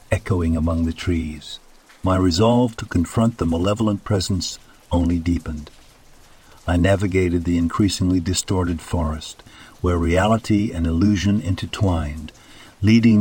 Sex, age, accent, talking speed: male, 60-79, American, 115 wpm